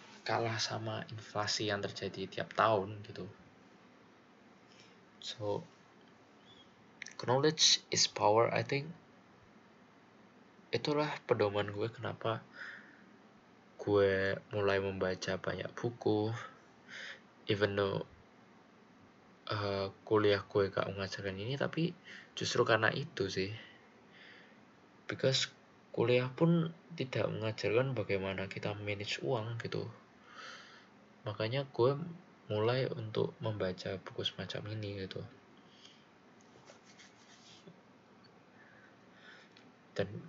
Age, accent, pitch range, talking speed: 20-39, native, 100-125 Hz, 80 wpm